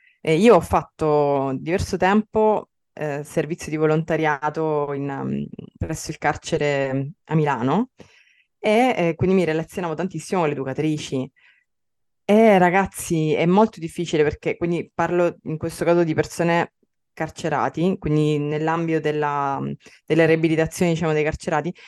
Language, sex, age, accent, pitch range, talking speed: Italian, female, 20-39, native, 150-185 Hz, 130 wpm